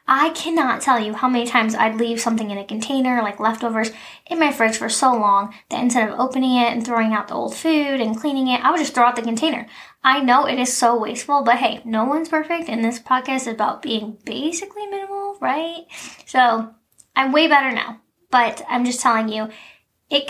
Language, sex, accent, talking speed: English, female, American, 215 wpm